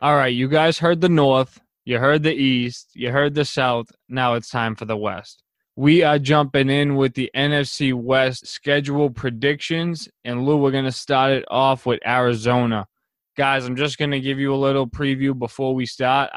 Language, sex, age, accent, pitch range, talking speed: English, male, 20-39, American, 115-135 Hz, 200 wpm